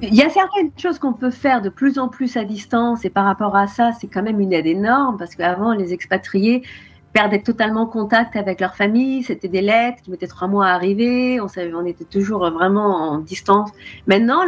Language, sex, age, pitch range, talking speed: French, female, 40-59, 215-270 Hz, 220 wpm